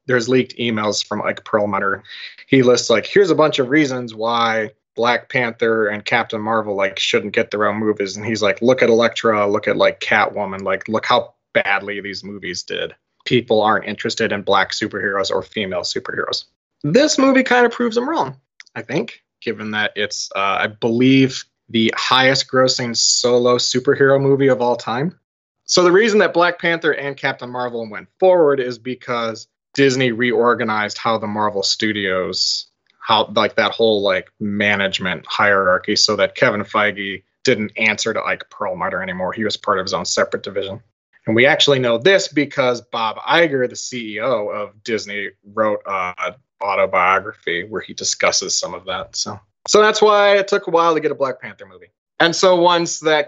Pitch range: 105-145 Hz